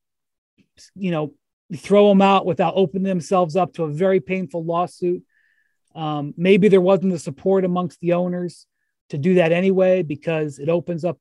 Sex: male